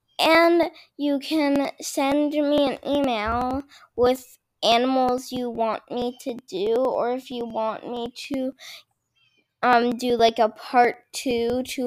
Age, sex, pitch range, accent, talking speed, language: 10-29, female, 235-280 Hz, American, 135 wpm, English